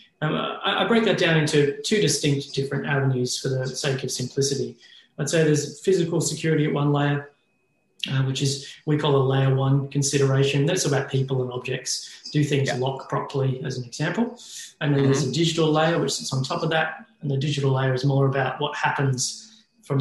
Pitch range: 135-155 Hz